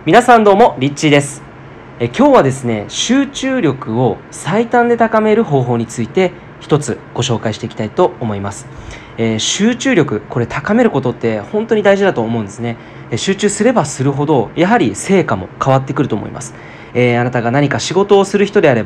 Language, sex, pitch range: Japanese, male, 115-180 Hz